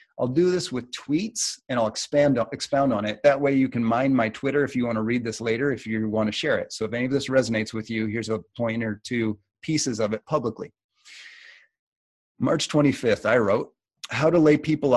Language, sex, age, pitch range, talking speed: English, male, 30-49, 110-135 Hz, 215 wpm